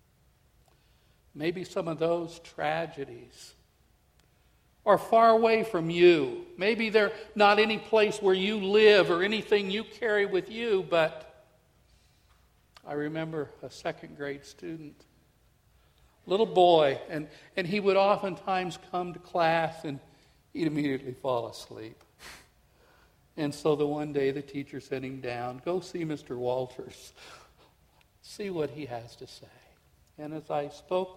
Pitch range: 150-220 Hz